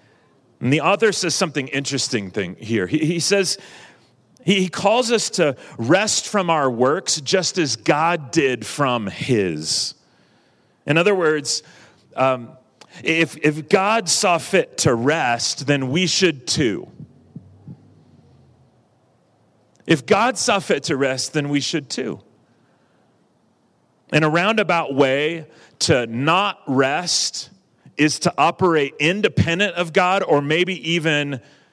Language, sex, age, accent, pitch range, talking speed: English, male, 40-59, American, 125-170 Hz, 125 wpm